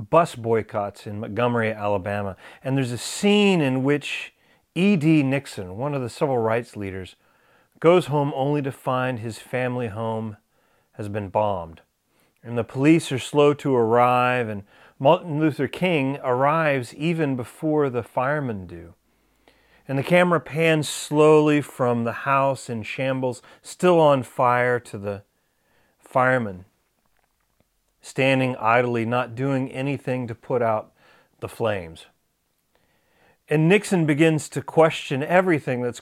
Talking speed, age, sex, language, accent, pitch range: 135 wpm, 40-59, male, English, American, 115-145 Hz